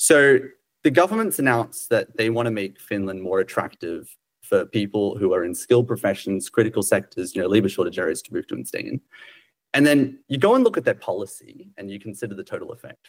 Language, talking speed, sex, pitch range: Finnish, 215 wpm, male, 110-155 Hz